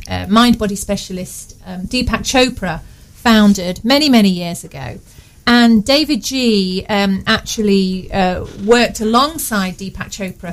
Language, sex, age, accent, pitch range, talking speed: English, female, 40-59, British, 190-245 Hz, 125 wpm